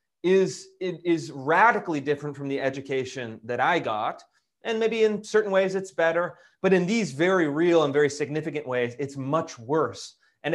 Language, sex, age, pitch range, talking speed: English, male, 30-49, 135-175 Hz, 175 wpm